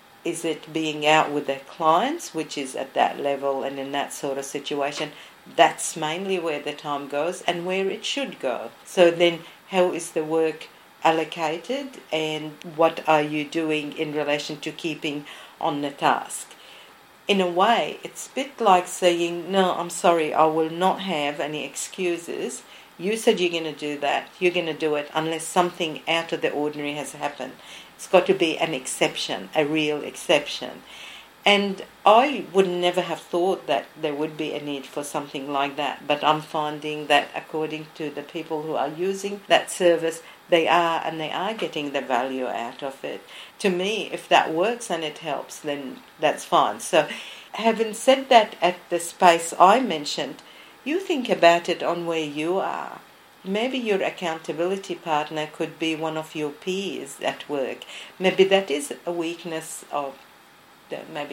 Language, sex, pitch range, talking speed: English, female, 150-180 Hz, 175 wpm